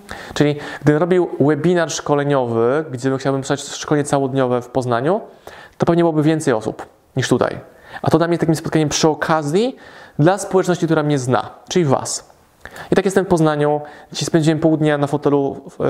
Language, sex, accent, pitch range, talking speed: Polish, male, native, 130-155 Hz, 170 wpm